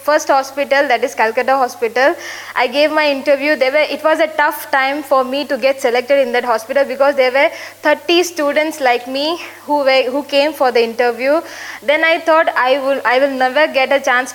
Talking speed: 210 wpm